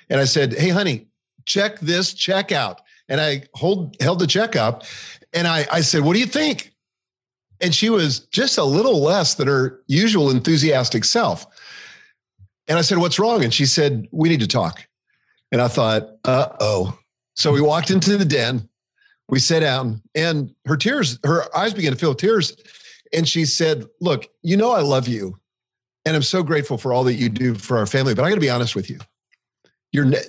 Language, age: English, 50-69